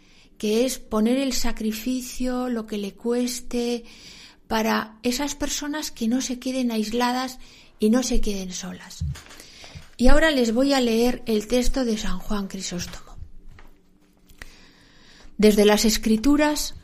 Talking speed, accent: 130 wpm, Spanish